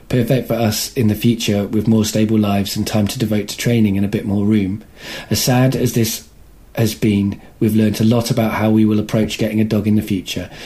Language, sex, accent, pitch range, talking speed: English, male, British, 105-120 Hz, 235 wpm